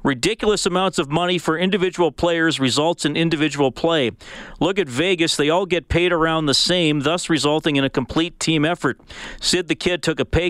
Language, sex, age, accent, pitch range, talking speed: English, male, 40-59, American, 125-160 Hz, 195 wpm